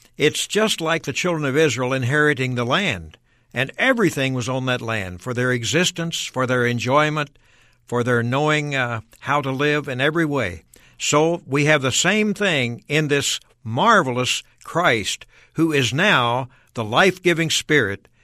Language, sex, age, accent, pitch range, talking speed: English, male, 60-79, American, 120-155 Hz, 160 wpm